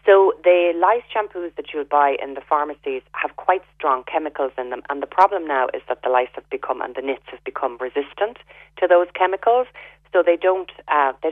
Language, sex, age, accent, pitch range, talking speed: English, female, 40-59, Irish, 135-170 Hz, 210 wpm